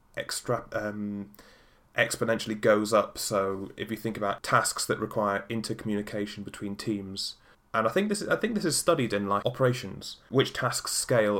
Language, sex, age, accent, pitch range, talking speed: English, male, 20-39, British, 100-115 Hz, 170 wpm